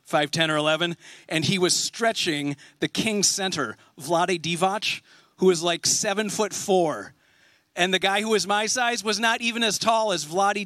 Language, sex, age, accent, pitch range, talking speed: English, male, 40-59, American, 175-230 Hz, 180 wpm